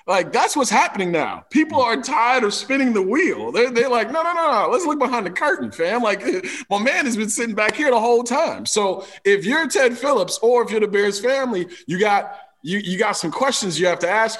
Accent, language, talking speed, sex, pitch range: American, English, 240 wpm, male, 170-245 Hz